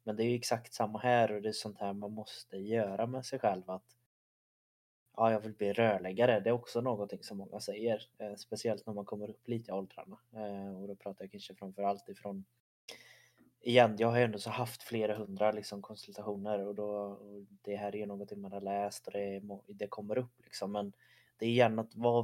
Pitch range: 100-120 Hz